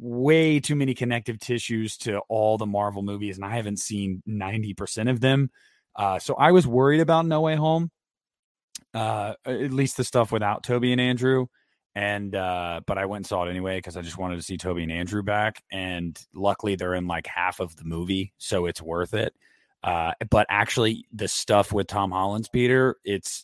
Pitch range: 90-120 Hz